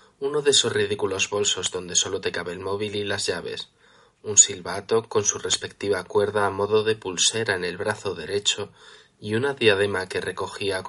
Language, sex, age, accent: Spanish, male, 20-39, Spanish